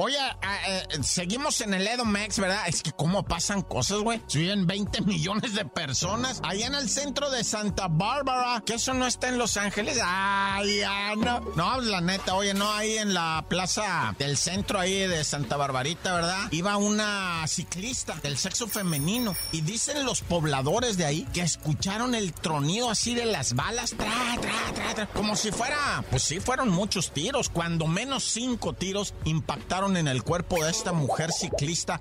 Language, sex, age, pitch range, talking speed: Spanish, male, 50-69, 150-210 Hz, 170 wpm